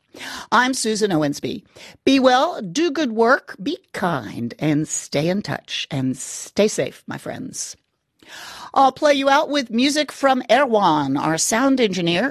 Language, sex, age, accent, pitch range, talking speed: English, female, 50-69, American, 180-270 Hz, 145 wpm